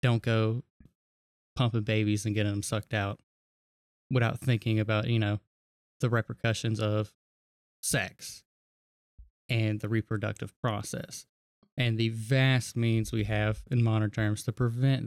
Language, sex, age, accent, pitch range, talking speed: English, male, 20-39, American, 105-125 Hz, 130 wpm